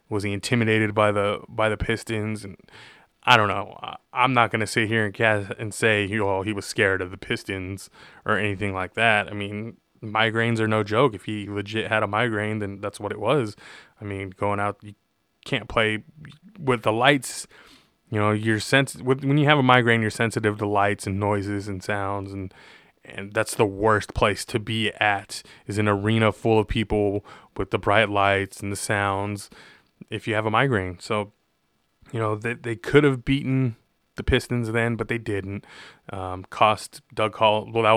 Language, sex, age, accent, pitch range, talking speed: English, male, 20-39, American, 100-115 Hz, 195 wpm